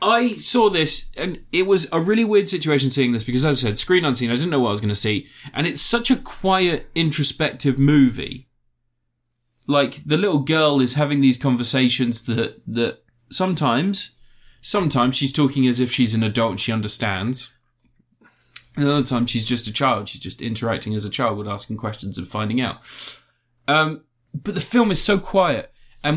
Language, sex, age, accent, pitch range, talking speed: English, male, 20-39, British, 120-150 Hz, 190 wpm